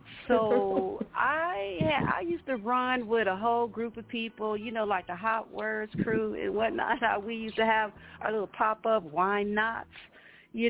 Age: 50-69